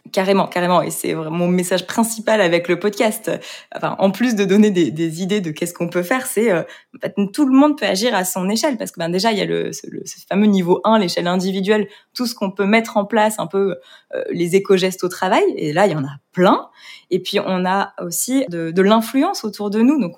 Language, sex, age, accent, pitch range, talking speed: French, female, 20-39, French, 175-225 Hz, 250 wpm